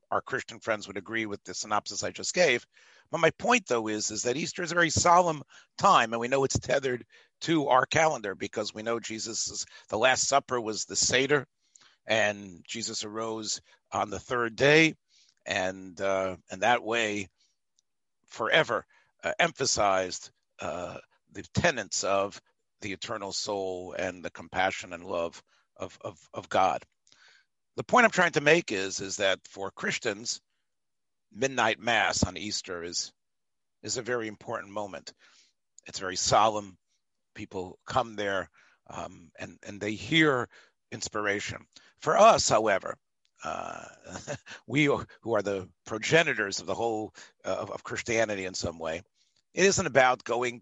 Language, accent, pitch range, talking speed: English, American, 100-125 Hz, 155 wpm